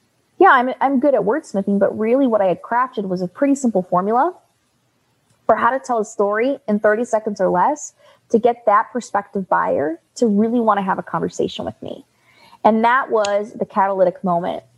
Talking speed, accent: 195 wpm, American